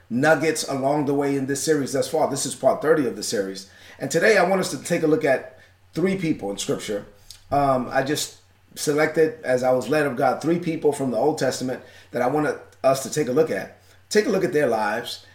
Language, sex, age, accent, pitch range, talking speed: English, male, 30-49, American, 120-155 Hz, 240 wpm